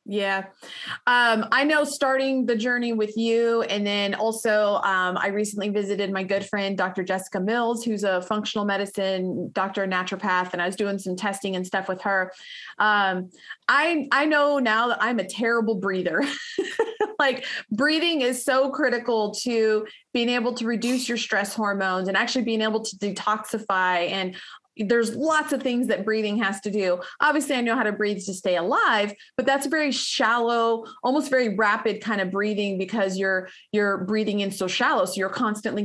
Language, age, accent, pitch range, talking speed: English, 30-49, American, 195-240 Hz, 180 wpm